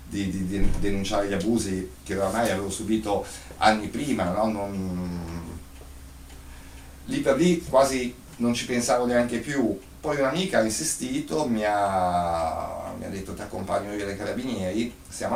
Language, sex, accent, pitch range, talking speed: Italian, male, native, 90-110 Hz, 140 wpm